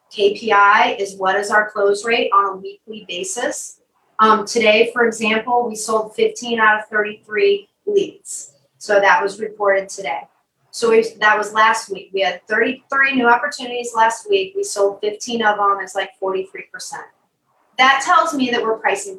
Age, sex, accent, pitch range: 30-49, female, American, 205-255 Hz